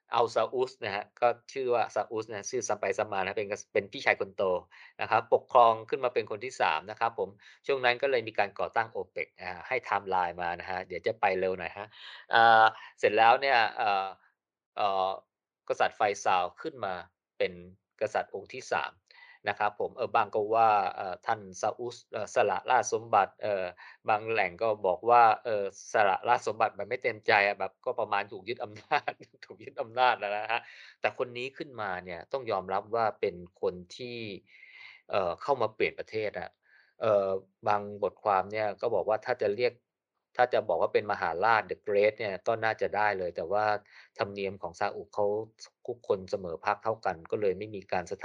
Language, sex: Thai, male